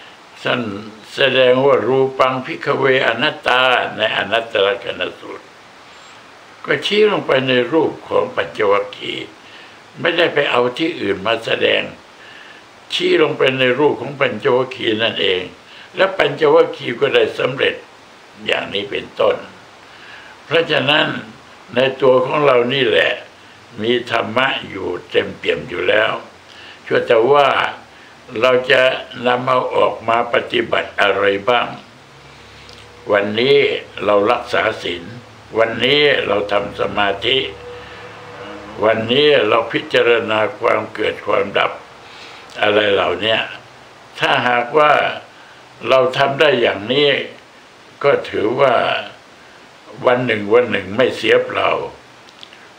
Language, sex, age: Thai, male, 60-79